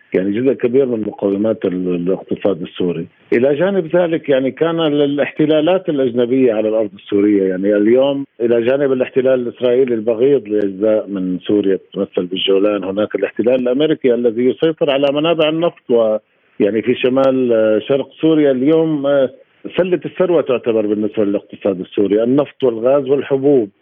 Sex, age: male, 50-69